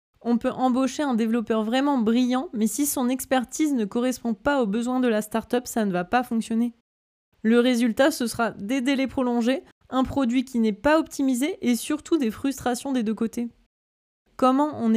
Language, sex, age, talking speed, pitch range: French, female, 20-39, 185 wpm, 220-255 Hz